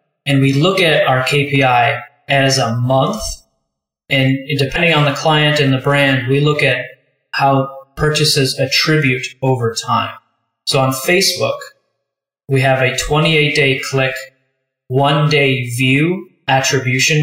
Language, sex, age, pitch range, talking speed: English, male, 30-49, 130-150 Hz, 130 wpm